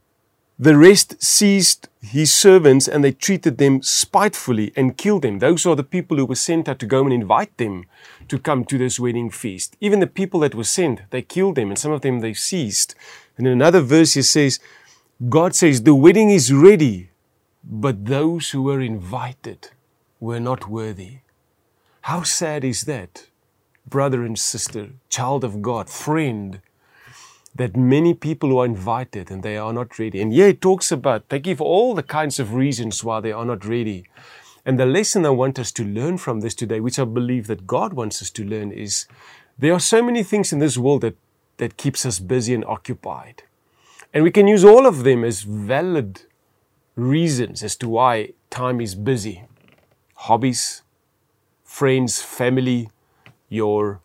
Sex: male